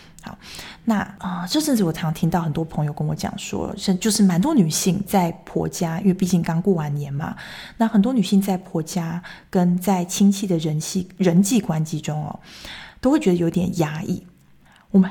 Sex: female